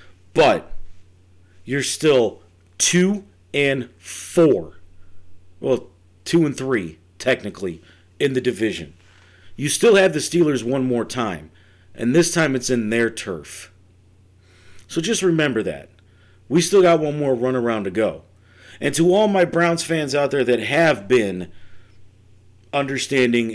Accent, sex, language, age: American, male, English, 40-59